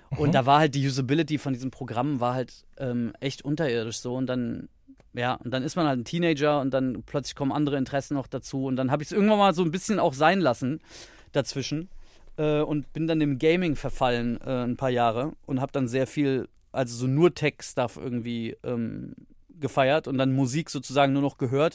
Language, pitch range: German, 130-150 Hz